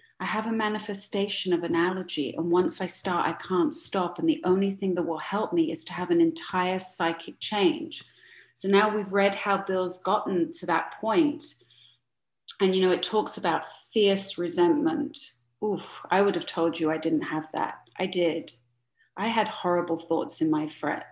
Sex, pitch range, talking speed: female, 175-225 Hz, 185 wpm